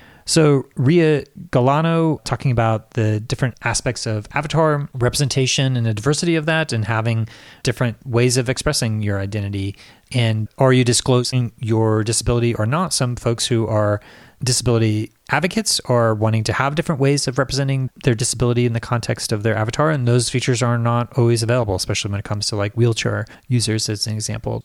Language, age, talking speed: English, 30-49, 175 wpm